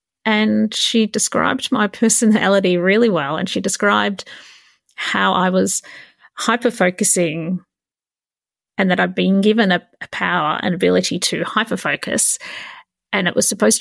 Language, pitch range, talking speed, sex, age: English, 185-225 Hz, 130 wpm, female, 30-49